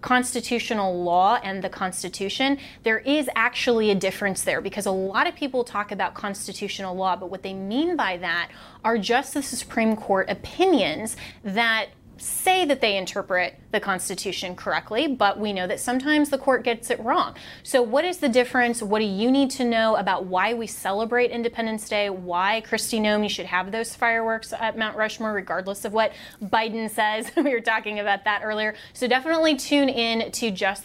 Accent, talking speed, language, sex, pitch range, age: American, 185 wpm, English, female, 195-250 Hz, 20-39